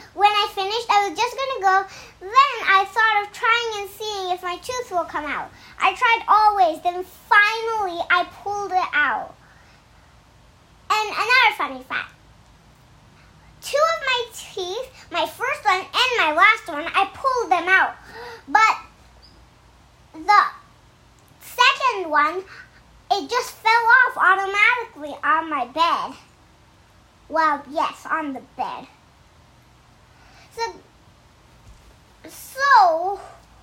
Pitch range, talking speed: 350-450 Hz, 125 wpm